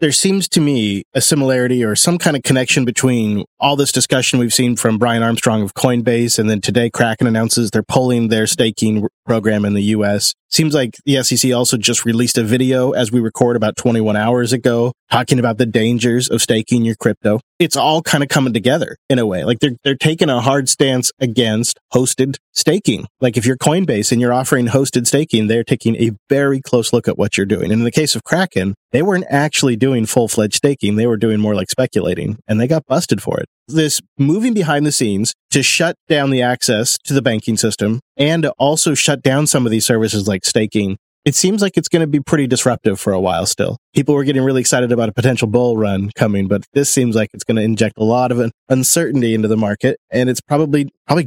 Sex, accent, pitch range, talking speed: male, American, 115-140 Hz, 220 wpm